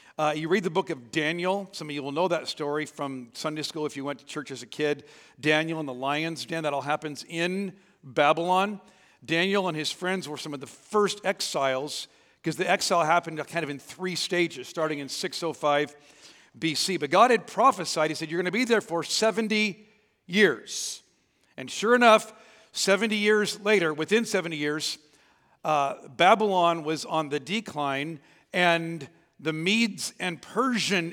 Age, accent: 50-69, American